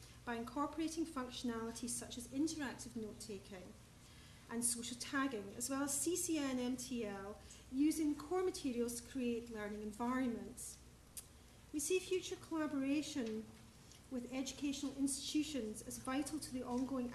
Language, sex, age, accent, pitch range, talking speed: English, female, 40-59, British, 225-275 Hz, 120 wpm